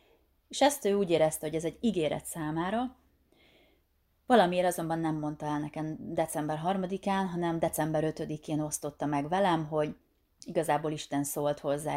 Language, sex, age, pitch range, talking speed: Hungarian, female, 30-49, 150-170 Hz, 145 wpm